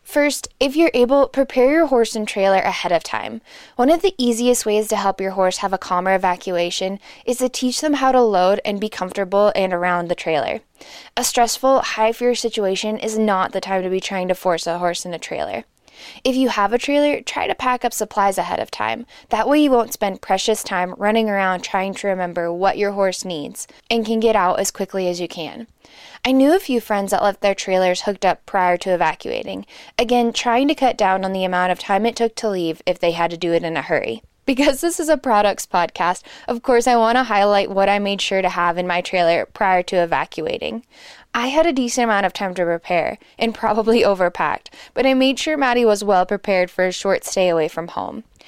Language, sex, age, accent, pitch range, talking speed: English, female, 10-29, American, 185-245 Hz, 230 wpm